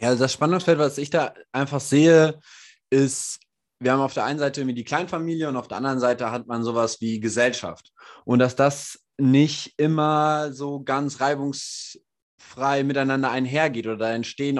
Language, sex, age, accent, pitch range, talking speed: German, male, 20-39, German, 105-135 Hz, 165 wpm